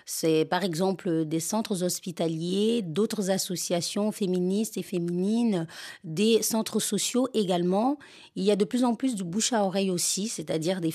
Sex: female